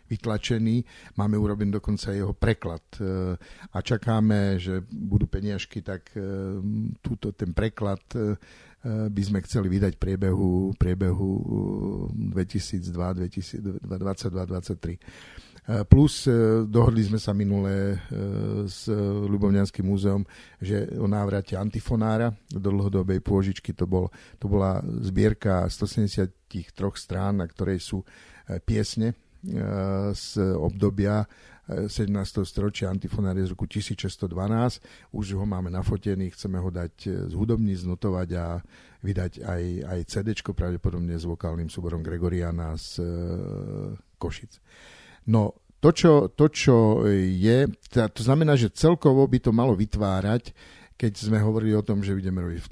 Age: 50-69